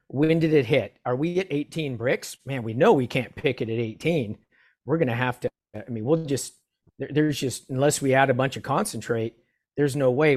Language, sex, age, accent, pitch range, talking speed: English, male, 50-69, American, 120-145 Hz, 225 wpm